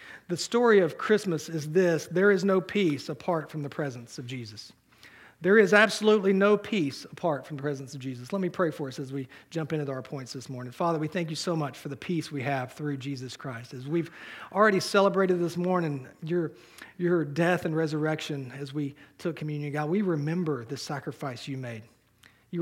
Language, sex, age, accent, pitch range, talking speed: English, male, 40-59, American, 140-190 Hz, 205 wpm